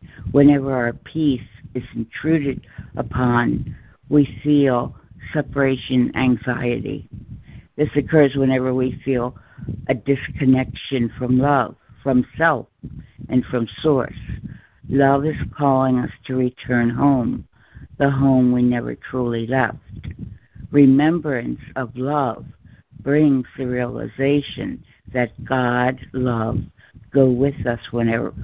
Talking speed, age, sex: 105 wpm, 60-79, female